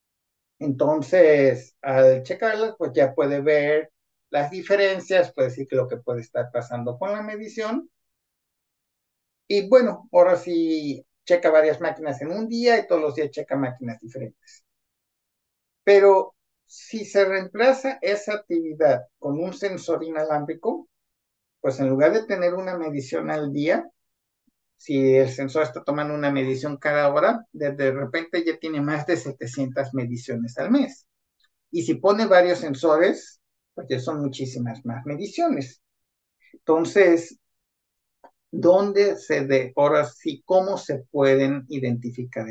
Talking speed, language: 135 wpm, English